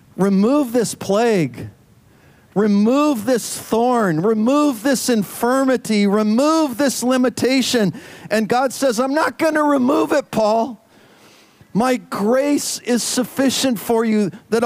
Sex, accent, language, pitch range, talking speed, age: male, American, English, 200-240 Hz, 120 wpm, 50-69